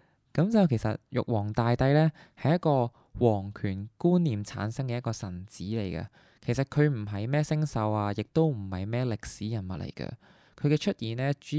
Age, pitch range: 20-39, 100-135 Hz